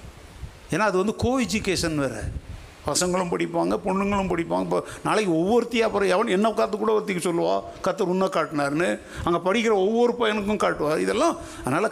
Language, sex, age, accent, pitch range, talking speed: Tamil, male, 60-79, native, 140-190 Hz, 145 wpm